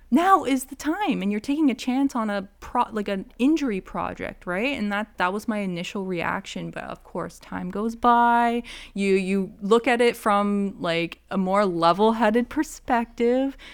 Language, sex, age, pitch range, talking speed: English, female, 20-39, 180-235 Hz, 180 wpm